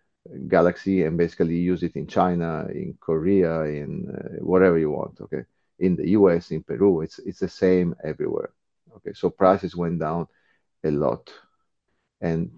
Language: English